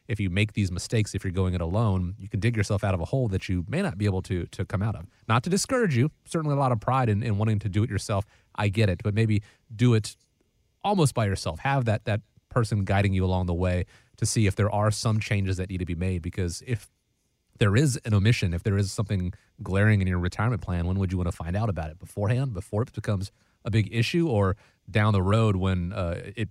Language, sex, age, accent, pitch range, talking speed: English, male, 30-49, American, 95-115 Hz, 260 wpm